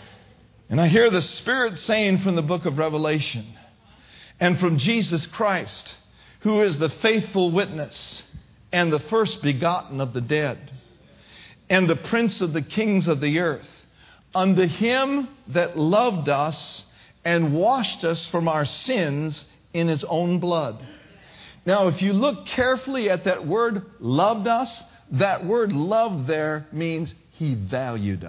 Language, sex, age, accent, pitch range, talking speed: English, male, 50-69, American, 120-190 Hz, 145 wpm